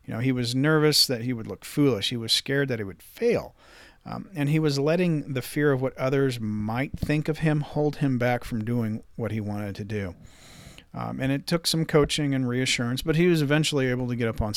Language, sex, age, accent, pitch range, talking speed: English, male, 40-59, American, 120-145 Hz, 240 wpm